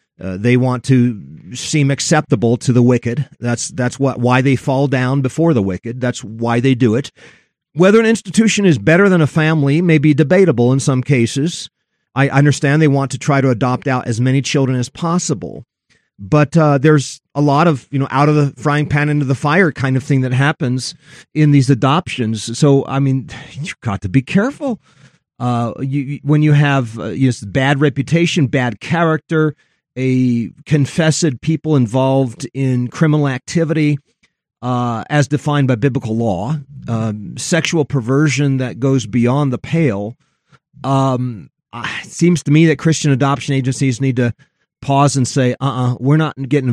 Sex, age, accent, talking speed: male, 40-59, American, 175 wpm